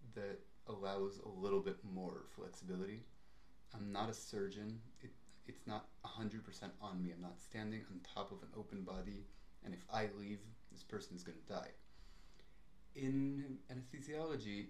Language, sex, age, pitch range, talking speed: Hebrew, male, 30-49, 100-125 Hz, 160 wpm